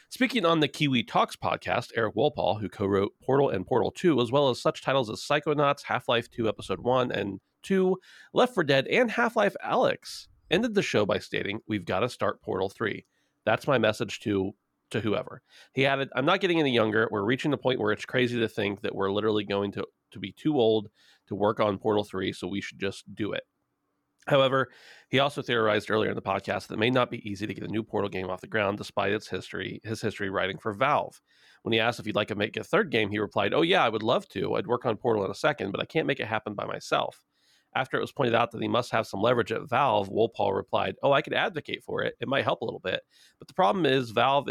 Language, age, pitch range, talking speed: English, 30-49, 105-135 Hz, 245 wpm